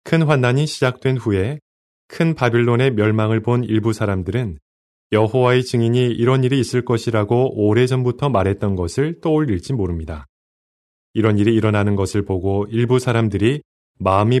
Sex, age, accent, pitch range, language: male, 20-39, native, 100-130 Hz, Korean